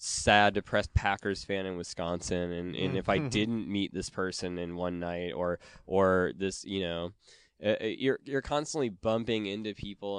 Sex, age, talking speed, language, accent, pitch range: male, 20-39, 170 wpm, English, American, 95-115 Hz